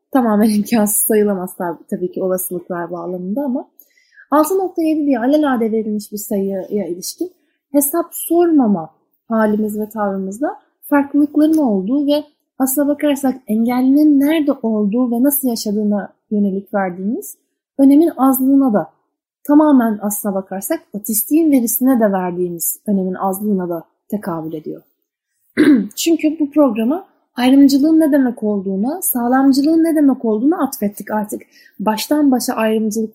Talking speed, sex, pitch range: 115 wpm, female, 210-295 Hz